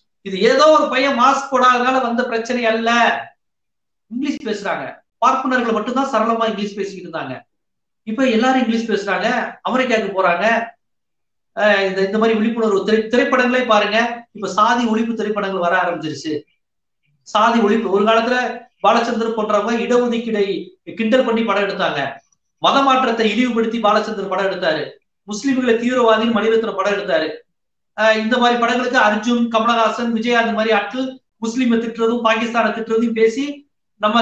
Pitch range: 210-245 Hz